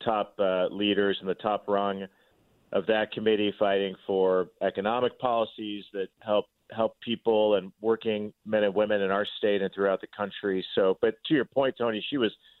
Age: 40-59